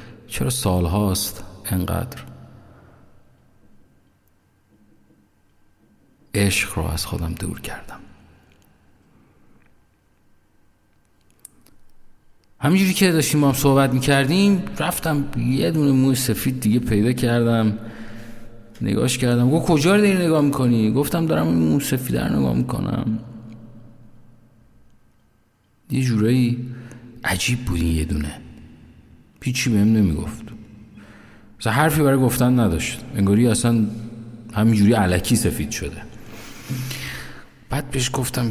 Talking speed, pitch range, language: 95 wpm, 105-130 Hz, Persian